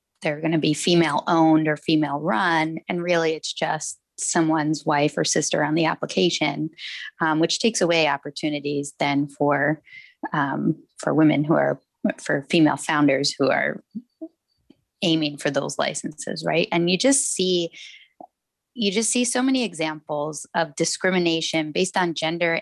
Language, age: English, 20-39